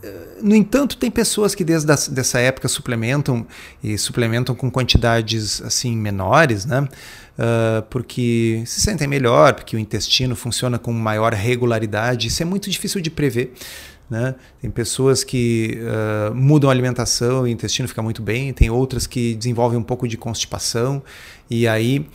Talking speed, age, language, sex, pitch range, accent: 155 wpm, 30-49, Portuguese, male, 115-135 Hz, Brazilian